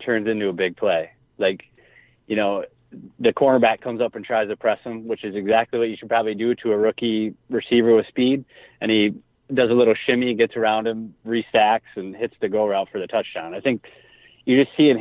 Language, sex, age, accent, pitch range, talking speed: English, male, 30-49, American, 100-120 Hz, 215 wpm